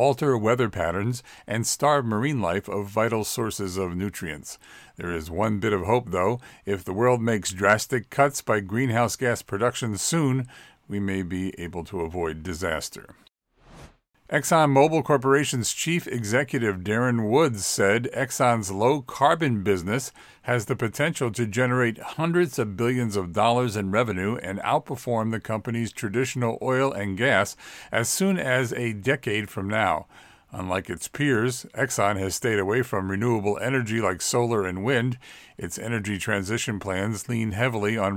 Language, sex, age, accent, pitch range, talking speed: English, male, 50-69, American, 100-130 Hz, 150 wpm